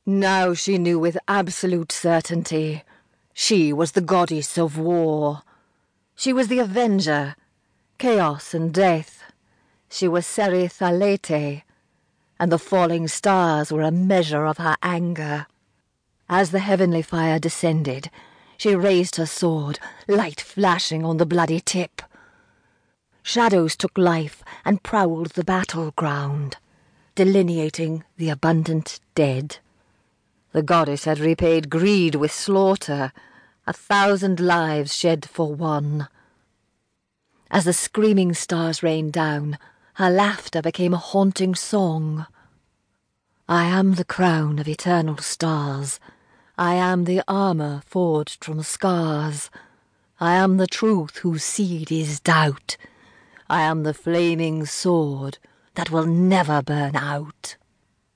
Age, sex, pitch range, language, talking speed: 40-59, female, 150-185 Hz, English, 120 wpm